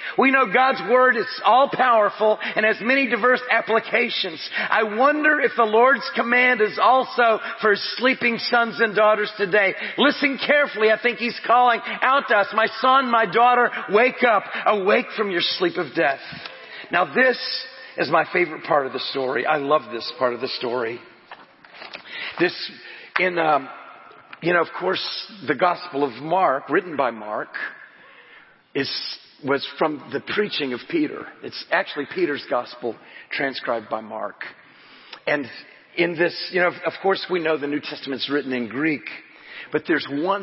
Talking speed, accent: 160 wpm, American